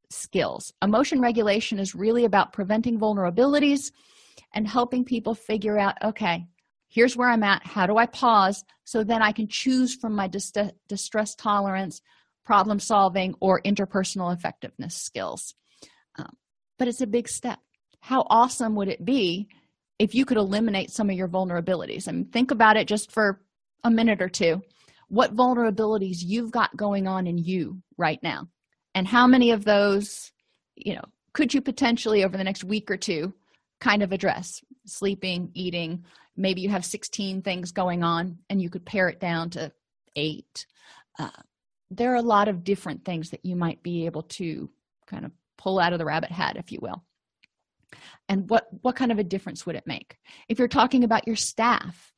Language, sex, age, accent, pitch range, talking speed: English, female, 40-59, American, 185-230 Hz, 175 wpm